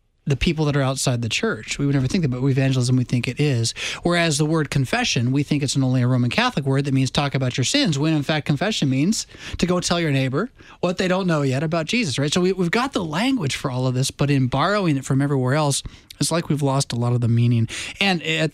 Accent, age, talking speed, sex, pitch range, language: American, 20-39, 260 wpm, male, 130-175 Hz, English